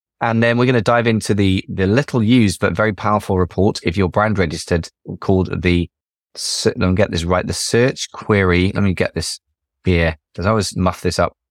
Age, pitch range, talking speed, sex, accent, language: 20-39, 90-110 Hz, 210 wpm, male, British, English